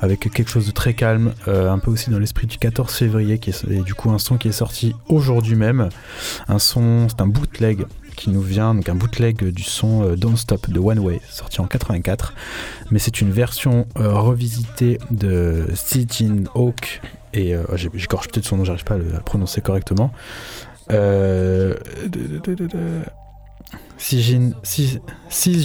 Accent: French